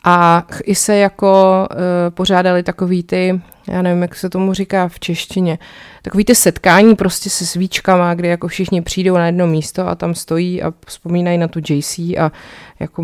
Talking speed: 180 wpm